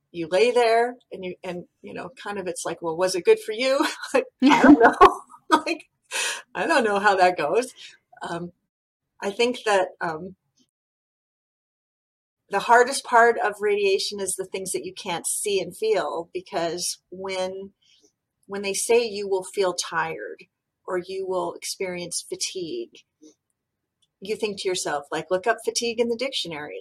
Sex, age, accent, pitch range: female, 40-59, American, 170-255 Hz